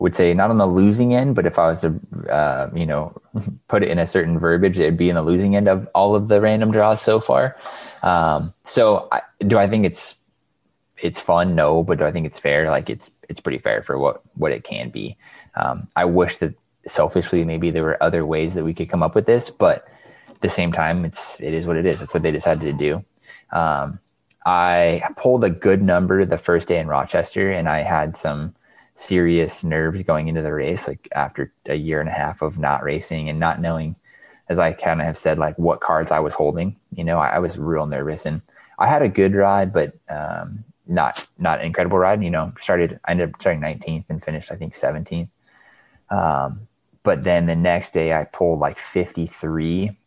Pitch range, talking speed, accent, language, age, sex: 80-95 Hz, 220 wpm, American, English, 20-39, male